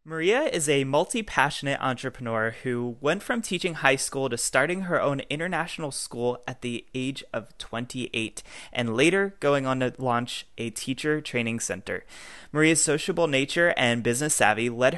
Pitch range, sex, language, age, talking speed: 120-150 Hz, male, English, 20-39, 155 wpm